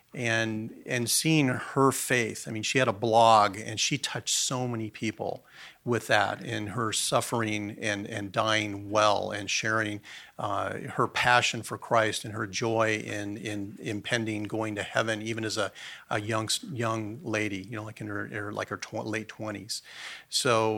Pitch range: 105-120 Hz